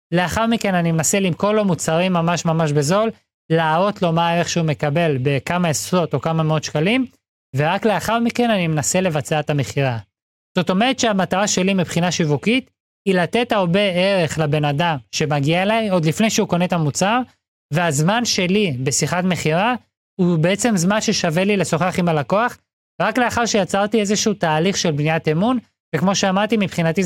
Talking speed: 160 wpm